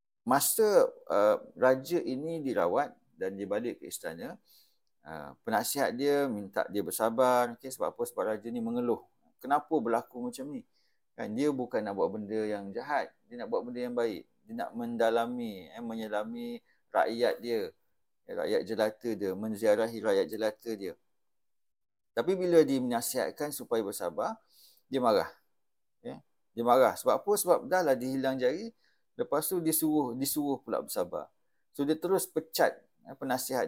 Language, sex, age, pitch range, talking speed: English, male, 50-69, 115-175 Hz, 155 wpm